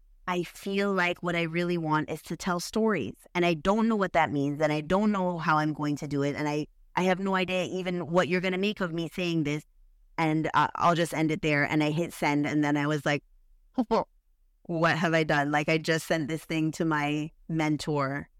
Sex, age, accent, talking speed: female, 30-49, American, 235 wpm